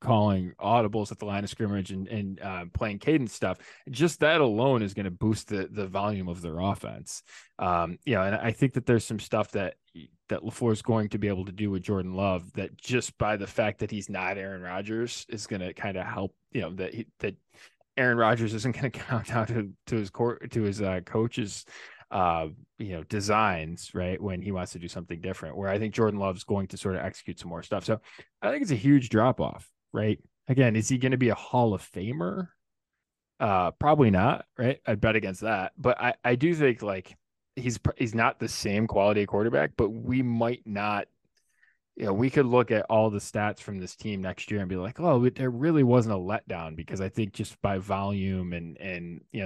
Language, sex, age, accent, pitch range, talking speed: English, male, 20-39, American, 95-115 Hz, 225 wpm